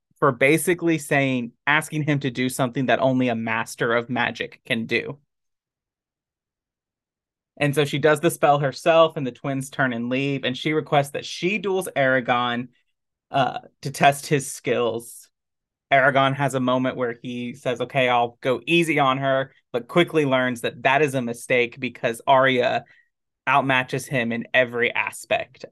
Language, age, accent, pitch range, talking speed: English, 20-39, American, 125-155 Hz, 160 wpm